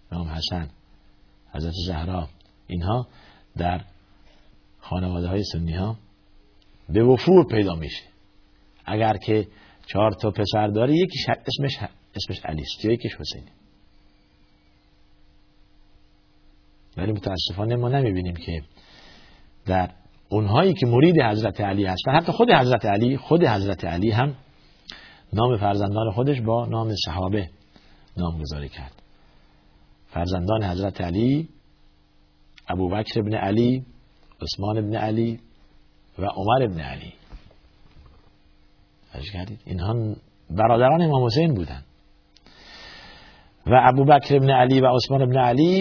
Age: 50-69